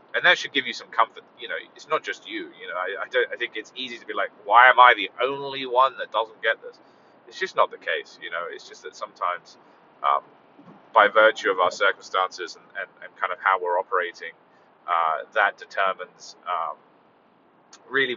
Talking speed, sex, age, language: 215 wpm, male, 30-49, English